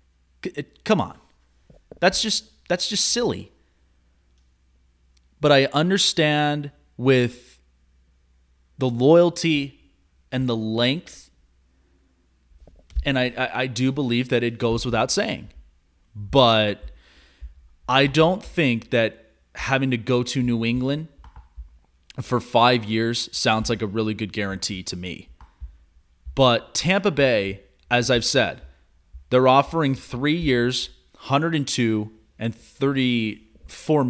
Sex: male